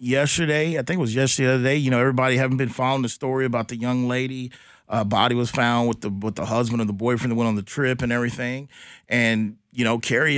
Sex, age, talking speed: male, 30-49, 250 wpm